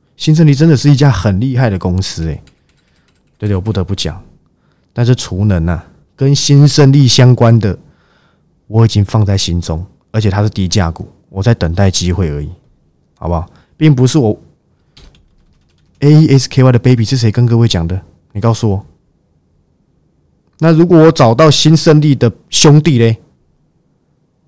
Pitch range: 95-135 Hz